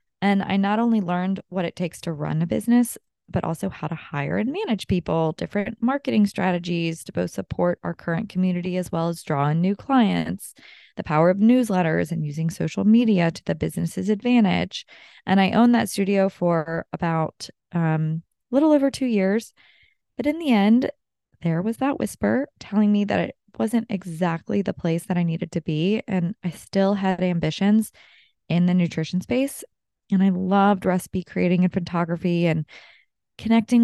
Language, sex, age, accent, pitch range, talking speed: English, female, 20-39, American, 165-205 Hz, 175 wpm